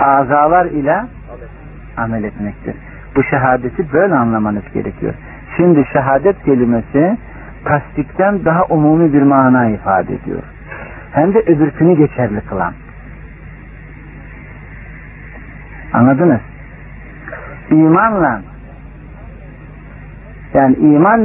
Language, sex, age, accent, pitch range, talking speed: Turkish, male, 60-79, native, 135-170 Hz, 80 wpm